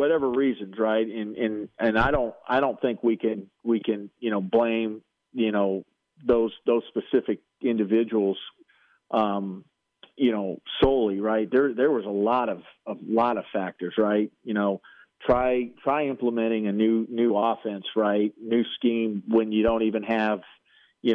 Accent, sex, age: American, male, 40-59